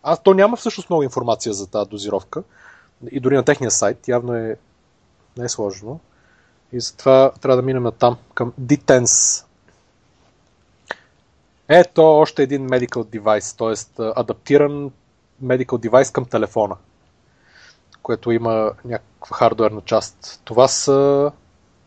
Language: Bulgarian